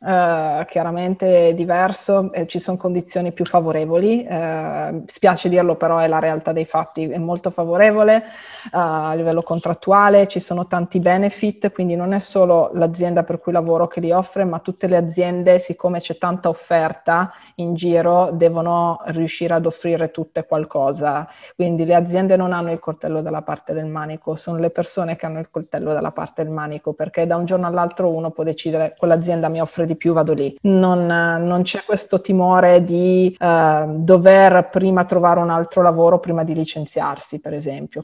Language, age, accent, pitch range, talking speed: Italian, 20-39, native, 165-195 Hz, 170 wpm